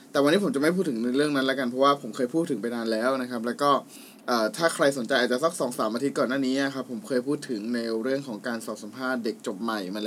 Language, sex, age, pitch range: Thai, male, 20-39, 120-170 Hz